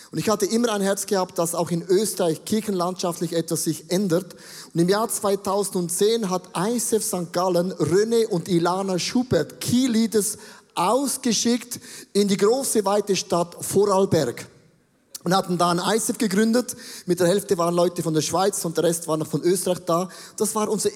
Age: 30-49